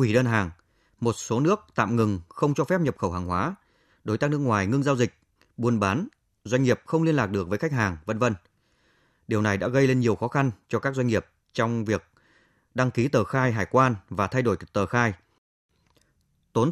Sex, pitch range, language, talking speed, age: male, 100-135 Hz, Vietnamese, 220 wpm, 20-39